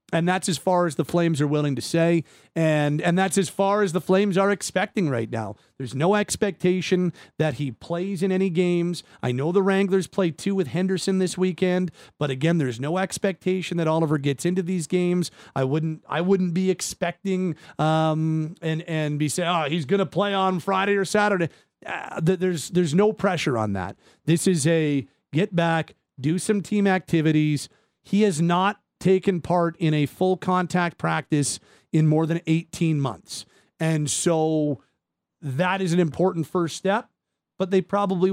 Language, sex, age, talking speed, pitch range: English, male, 40-59, 180 wpm, 155-195 Hz